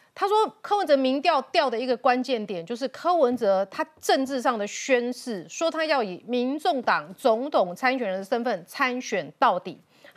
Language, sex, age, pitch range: Chinese, female, 30-49, 215-290 Hz